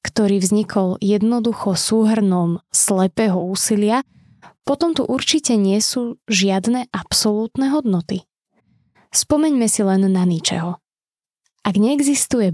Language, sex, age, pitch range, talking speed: Slovak, female, 20-39, 190-235 Hz, 100 wpm